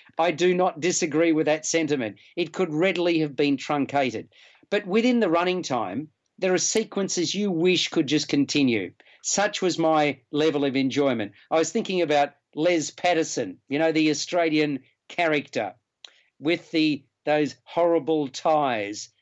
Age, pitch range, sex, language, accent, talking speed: 50-69, 145-180 Hz, male, English, Australian, 150 wpm